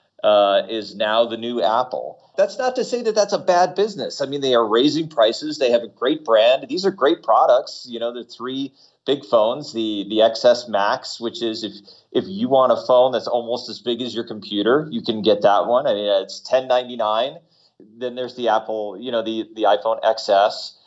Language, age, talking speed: English, 30-49, 215 wpm